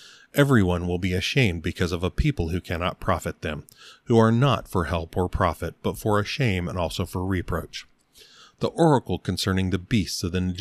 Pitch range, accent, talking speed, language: 85-110 Hz, American, 190 wpm, English